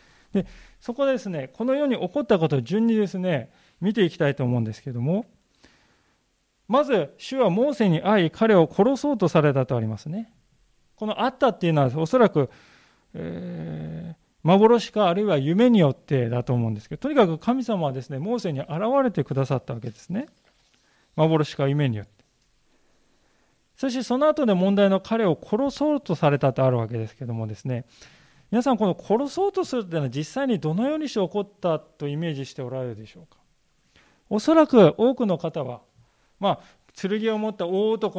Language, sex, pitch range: Japanese, male, 135-215 Hz